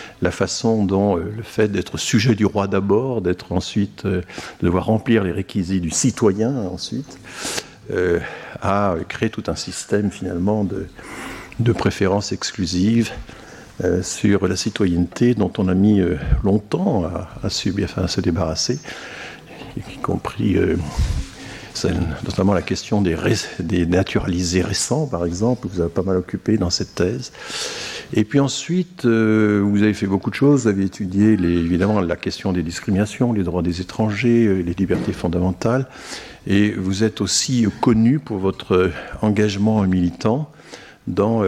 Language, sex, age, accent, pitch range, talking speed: French, male, 50-69, French, 90-110 Hz, 160 wpm